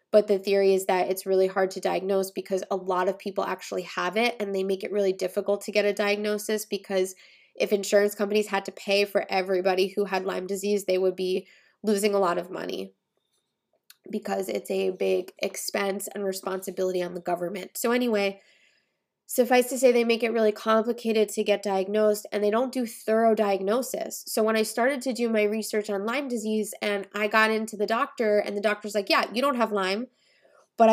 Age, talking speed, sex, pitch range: 20-39, 205 wpm, female, 195-220 Hz